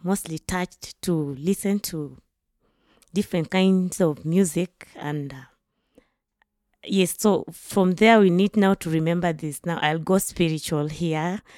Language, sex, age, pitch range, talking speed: English, female, 20-39, 155-190 Hz, 135 wpm